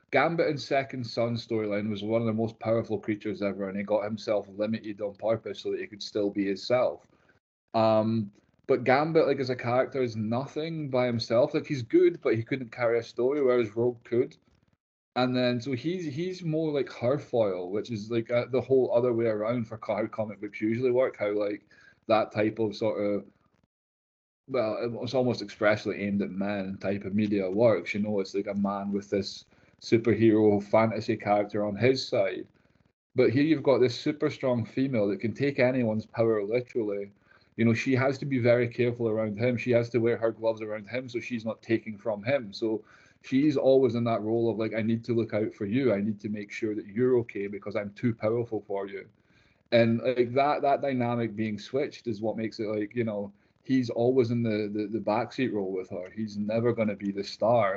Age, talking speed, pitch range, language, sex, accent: 20-39, 210 wpm, 105-125 Hz, English, male, British